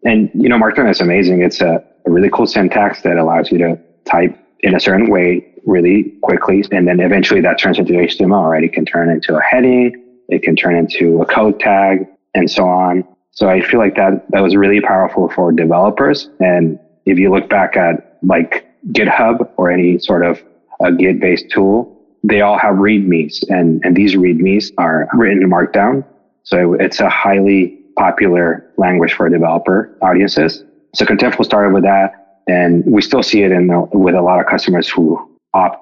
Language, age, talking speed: English, 20-39, 190 wpm